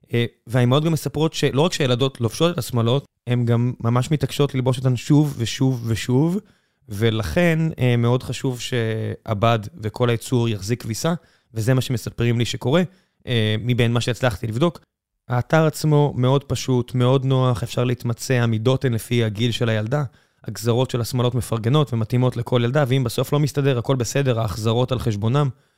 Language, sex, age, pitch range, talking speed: Hebrew, male, 20-39, 120-145 Hz, 150 wpm